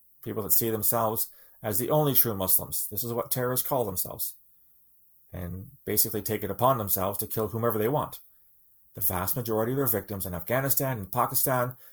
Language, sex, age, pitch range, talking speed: English, male, 30-49, 110-155 Hz, 180 wpm